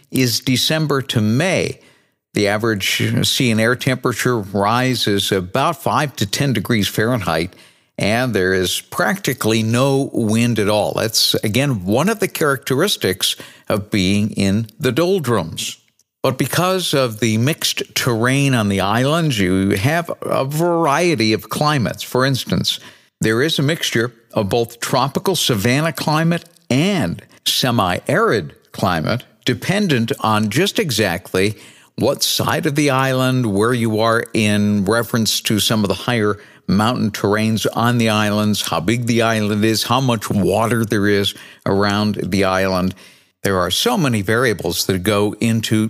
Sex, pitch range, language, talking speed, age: male, 105-135 Hz, English, 145 wpm, 60-79